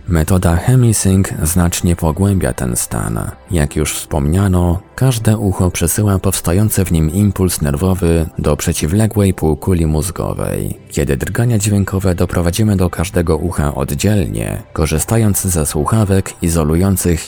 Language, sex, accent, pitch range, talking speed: Polish, male, native, 80-100 Hz, 115 wpm